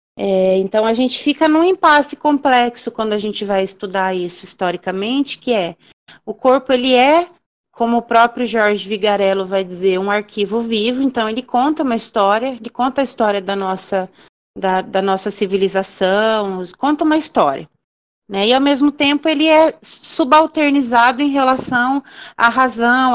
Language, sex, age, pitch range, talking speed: Portuguese, female, 30-49, 195-245 Hz, 160 wpm